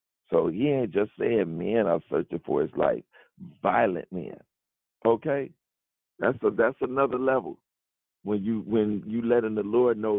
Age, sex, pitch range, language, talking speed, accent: 50-69, male, 105-135 Hz, English, 160 wpm, American